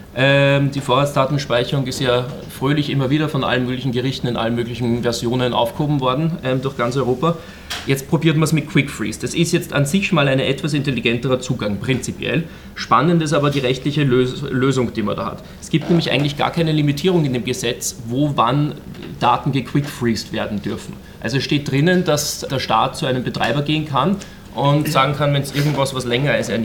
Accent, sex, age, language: German, male, 30-49, German